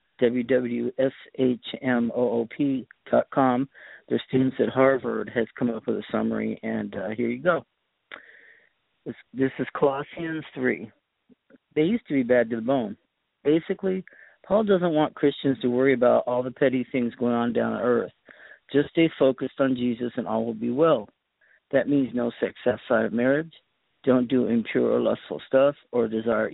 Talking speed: 160 wpm